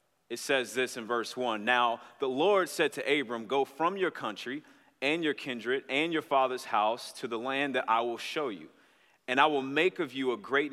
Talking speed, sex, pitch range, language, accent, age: 220 wpm, male, 130-180 Hz, English, American, 30-49